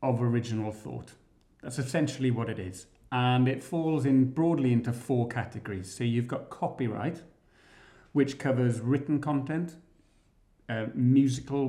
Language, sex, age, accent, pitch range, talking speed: English, male, 40-59, British, 110-135 Hz, 135 wpm